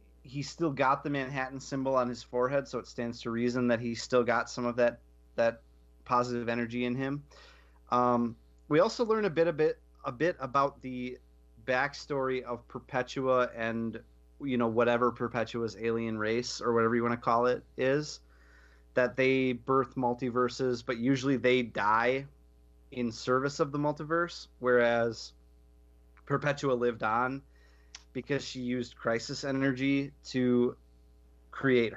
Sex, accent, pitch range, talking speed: male, American, 100-135 Hz, 150 wpm